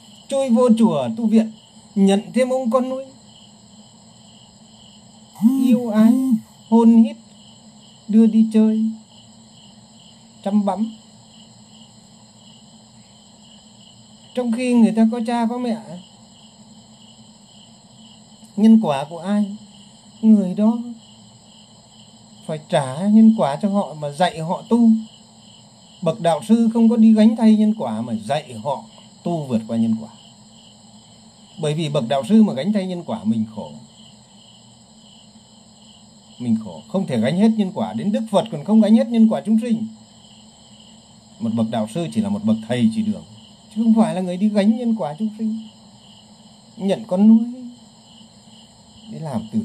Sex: male